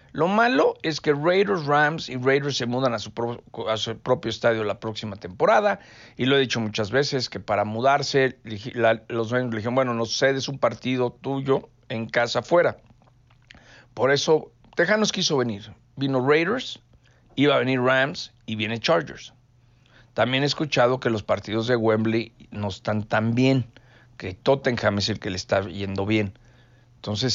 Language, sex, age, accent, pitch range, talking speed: English, male, 50-69, Mexican, 110-130 Hz, 160 wpm